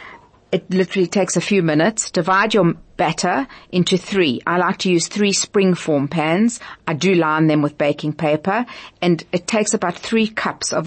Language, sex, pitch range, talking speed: English, female, 155-195 Hz, 175 wpm